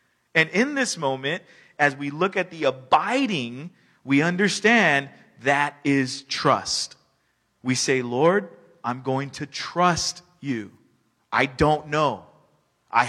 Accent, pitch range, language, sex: American, 130-185 Hz, English, male